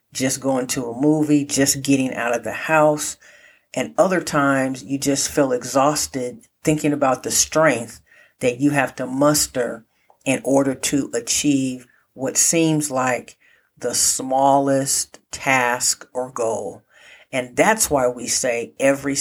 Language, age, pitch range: English, 50-69, 125-150 Hz